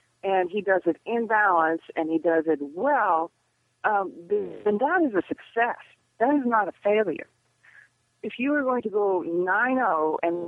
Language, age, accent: English, 40-59, American